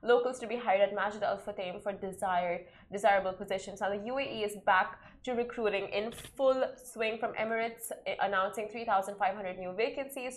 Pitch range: 190-225 Hz